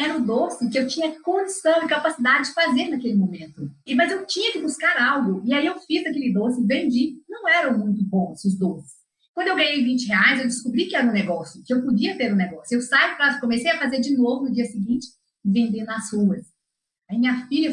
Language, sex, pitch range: English, female, 200-260 Hz